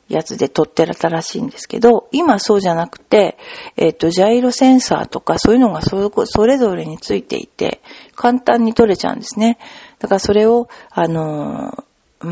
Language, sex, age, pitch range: Japanese, female, 50-69, 170-230 Hz